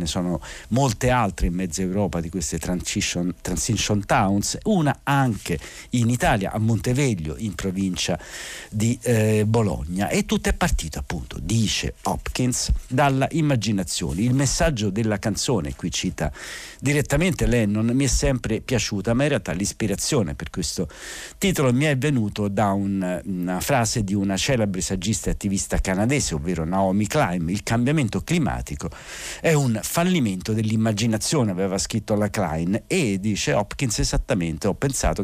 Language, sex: Italian, male